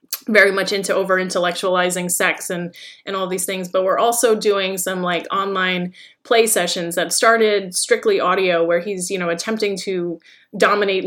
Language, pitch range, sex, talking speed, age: English, 180-210 Hz, female, 170 wpm, 30-49